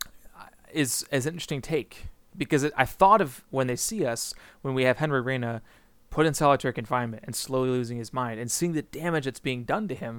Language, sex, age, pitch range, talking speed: English, male, 20-39, 120-150 Hz, 210 wpm